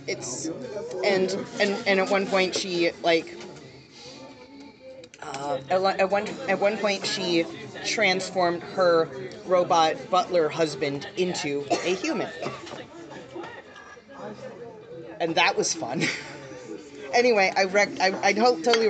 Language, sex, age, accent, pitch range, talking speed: English, female, 30-49, American, 155-195 Hz, 115 wpm